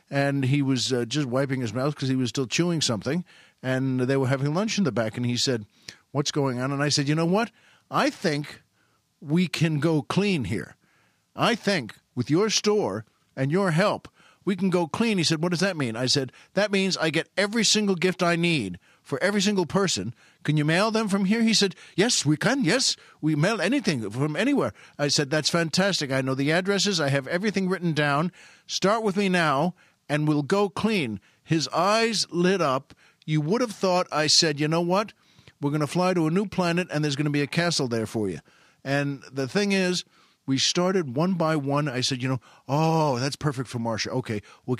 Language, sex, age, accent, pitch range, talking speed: English, male, 50-69, American, 135-180 Hz, 220 wpm